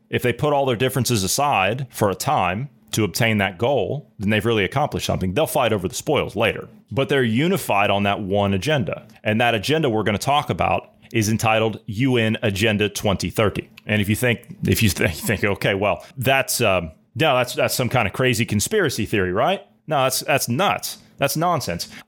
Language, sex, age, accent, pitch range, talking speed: English, male, 30-49, American, 110-130 Hz, 200 wpm